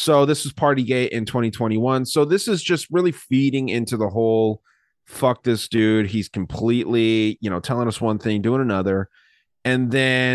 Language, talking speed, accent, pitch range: English, 180 wpm, American, 105-135 Hz